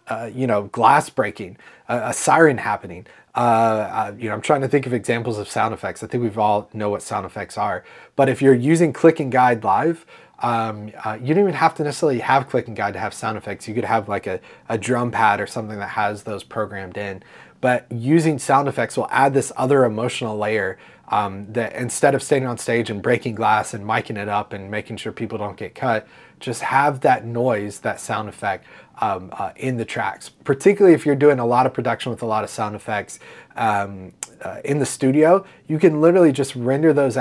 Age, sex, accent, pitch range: 30-49, male, American, 110-140 Hz